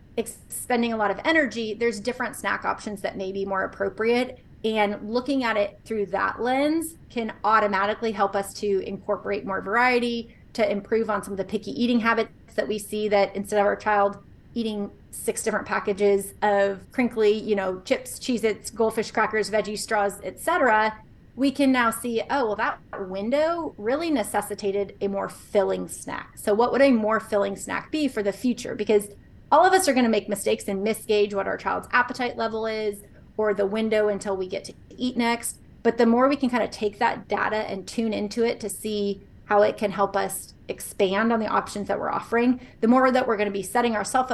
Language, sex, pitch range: English, female, 205-240 Hz